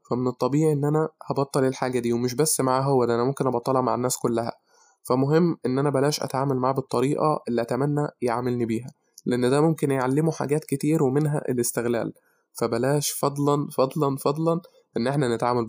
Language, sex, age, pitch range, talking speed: Arabic, male, 20-39, 125-145 Hz, 165 wpm